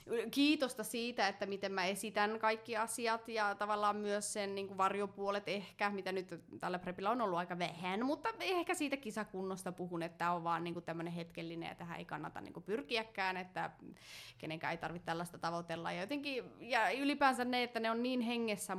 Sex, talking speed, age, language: female, 180 wpm, 20-39, Finnish